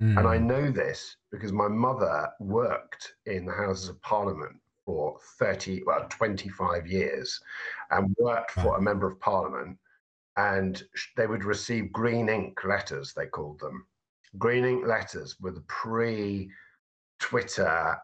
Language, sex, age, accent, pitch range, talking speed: English, male, 50-69, British, 95-120 Hz, 135 wpm